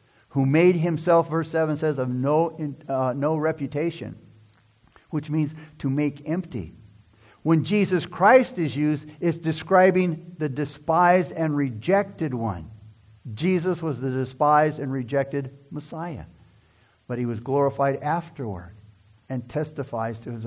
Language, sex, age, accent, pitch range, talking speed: English, male, 60-79, American, 120-165 Hz, 130 wpm